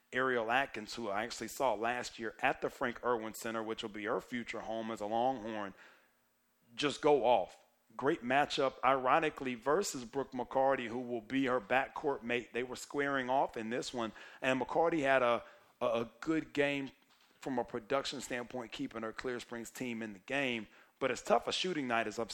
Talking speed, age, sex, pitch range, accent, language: 195 wpm, 40-59, male, 120-135 Hz, American, English